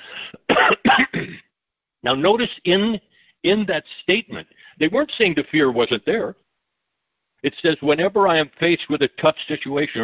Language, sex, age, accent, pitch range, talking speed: English, male, 60-79, American, 130-180 Hz, 135 wpm